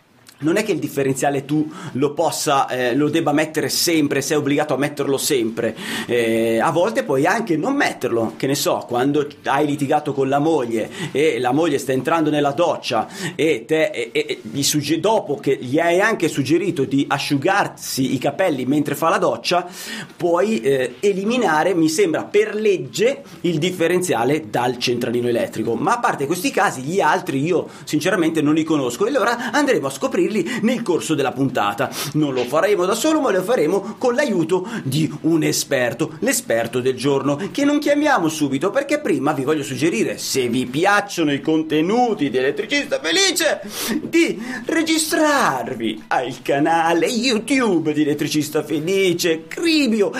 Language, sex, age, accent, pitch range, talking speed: Italian, male, 30-49, native, 140-230 Hz, 160 wpm